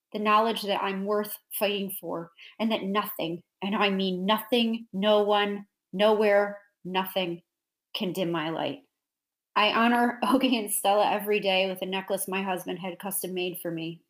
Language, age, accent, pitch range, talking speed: English, 30-49, American, 180-210 Hz, 165 wpm